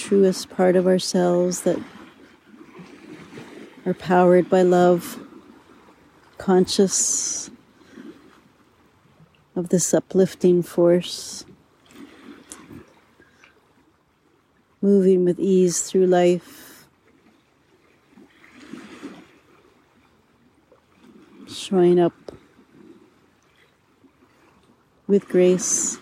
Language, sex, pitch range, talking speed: English, female, 180-280 Hz, 55 wpm